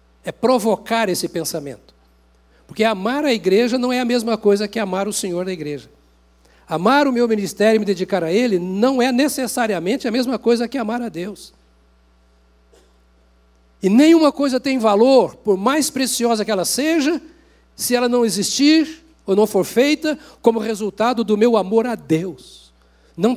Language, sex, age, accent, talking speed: Portuguese, male, 60-79, Brazilian, 165 wpm